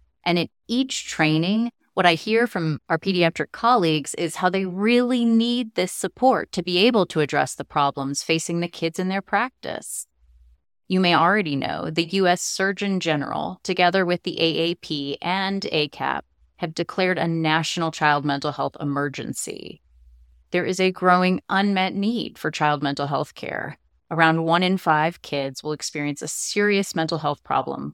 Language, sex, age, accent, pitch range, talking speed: English, female, 30-49, American, 150-200 Hz, 165 wpm